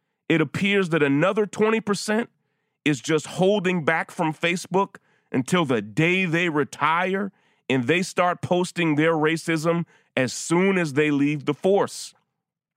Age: 30-49